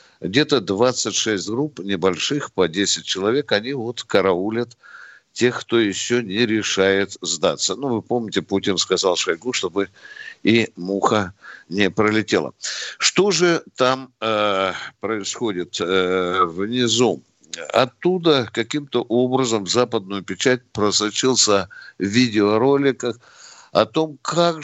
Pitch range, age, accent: 95-125 Hz, 60-79, native